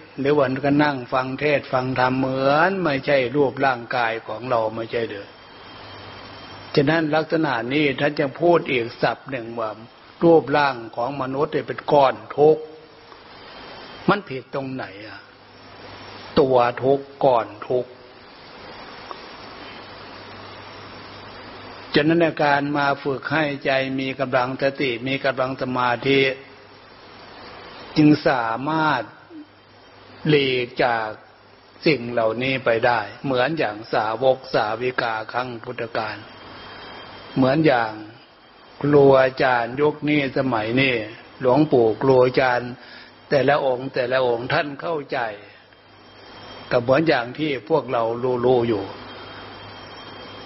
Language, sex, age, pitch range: Thai, male, 60-79, 120-150 Hz